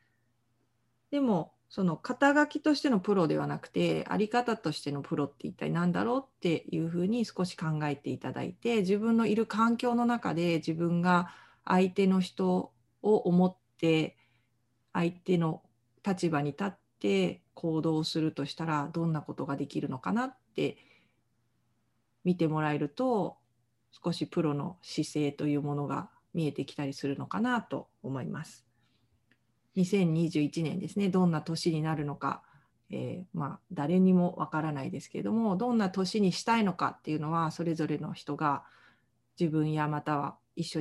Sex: female